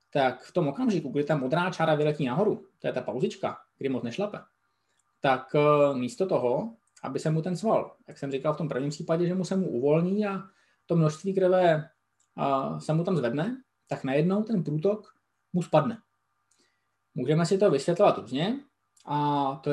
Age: 20-39